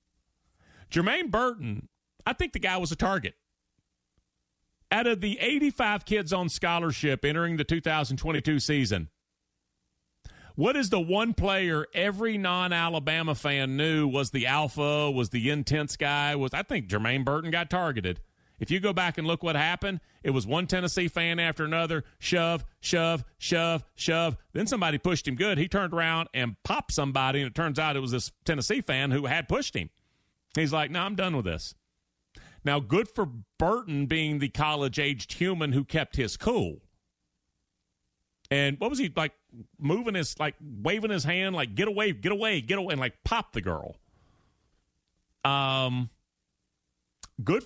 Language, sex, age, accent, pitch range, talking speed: English, male, 40-59, American, 130-180 Hz, 160 wpm